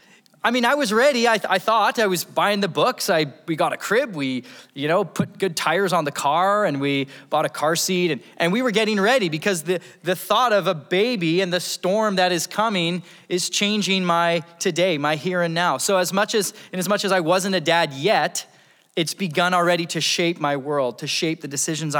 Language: English